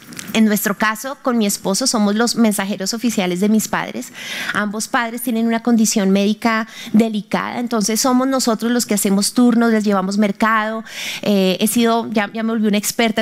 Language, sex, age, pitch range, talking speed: Spanish, female, 30-49, 215-275 Hz, 175 wpm